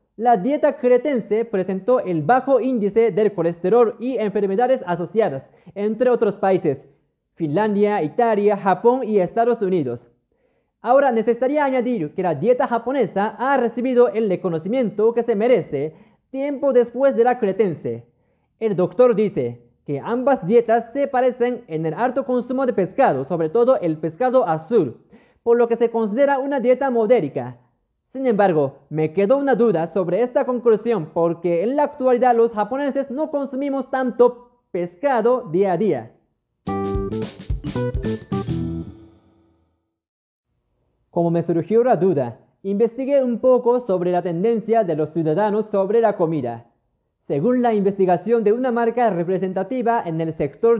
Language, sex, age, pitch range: Japanese, male, 30-49, 175-245 Hz